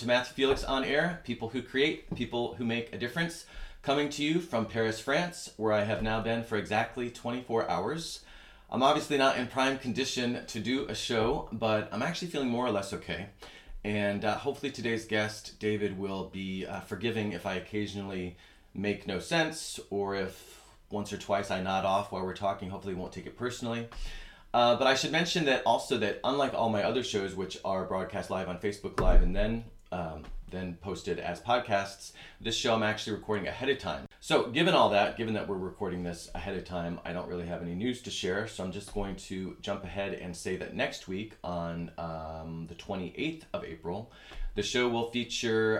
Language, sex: English, male